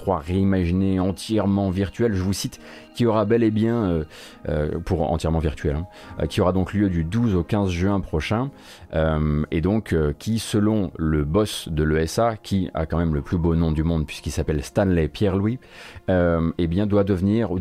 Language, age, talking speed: French, 30-49, 195 wpm